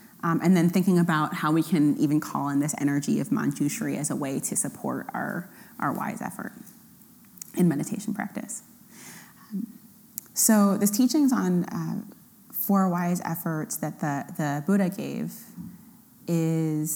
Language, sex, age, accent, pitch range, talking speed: English, female, 30-49, American, 165-225 Hz, 150 wpm